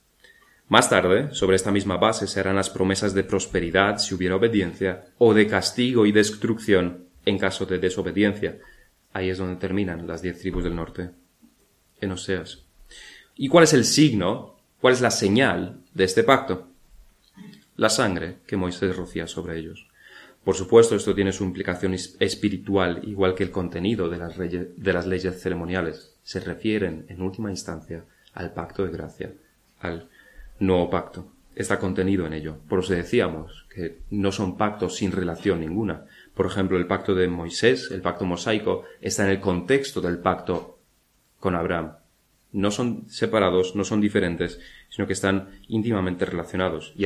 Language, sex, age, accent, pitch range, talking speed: Spanish, male, 30-49, Spanish, 90-100 Hz, 160 wpm